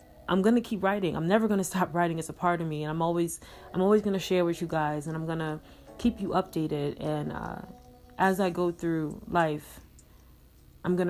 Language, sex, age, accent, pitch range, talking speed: English, female, 30-49, American, 155-185 Hz, 230 wpm